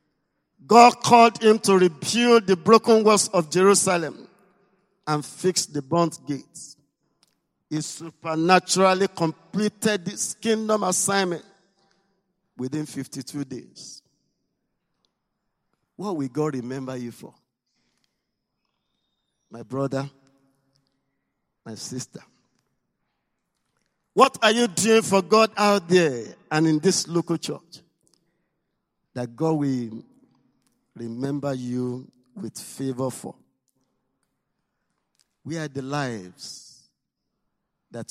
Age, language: 50-69, English